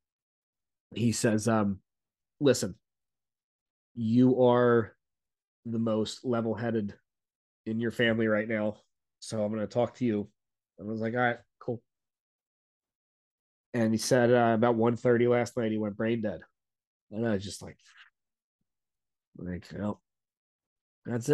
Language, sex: English, male